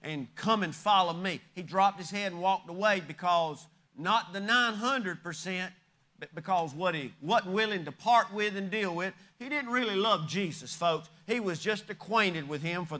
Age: 40-59